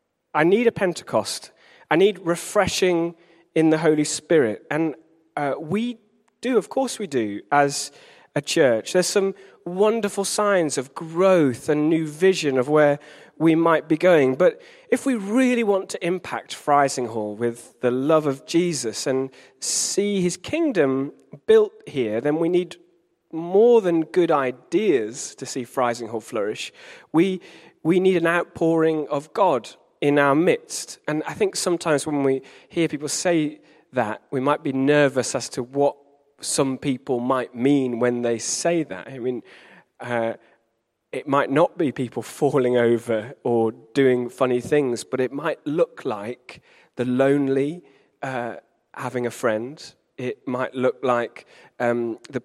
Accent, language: British, English